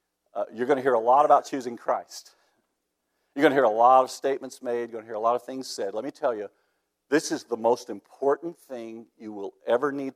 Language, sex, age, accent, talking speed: English, male, 50-69, American, 250 wpm